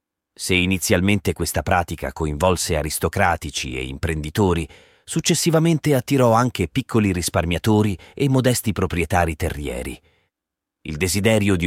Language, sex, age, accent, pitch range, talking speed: Italian, male, 30-49, native, 80-105 Hz, 105 wpm